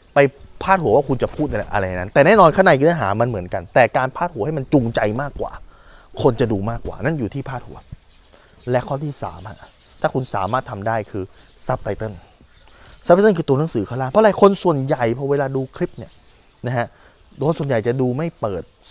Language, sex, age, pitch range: Thai, male, 20-39, 105-150 Hz